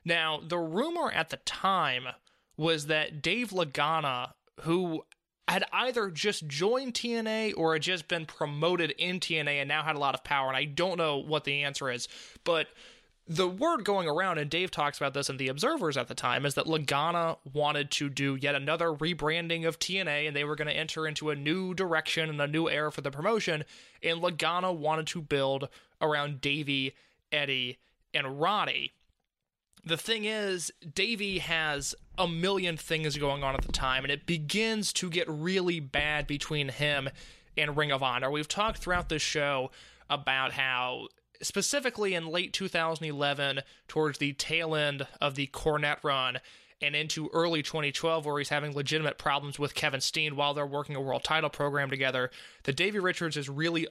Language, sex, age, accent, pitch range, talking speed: English, male, 20-39, American, 145-170 Hz, 180 wpm